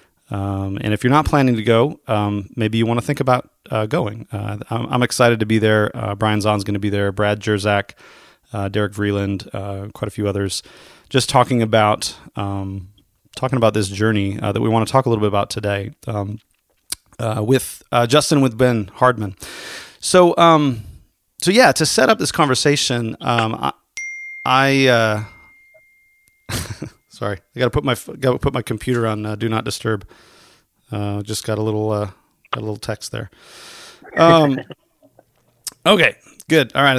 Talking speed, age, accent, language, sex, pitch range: 185 wpm, 30-49, American, English, male, 105-135 Hz